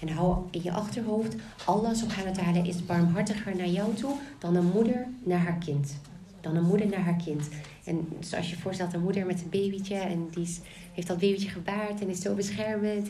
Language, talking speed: Dutch, 200 wpm